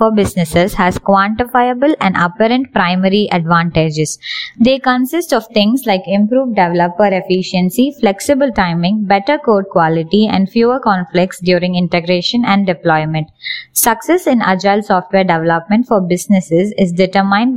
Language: English